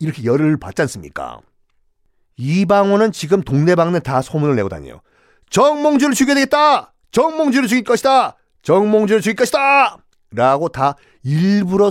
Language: Korean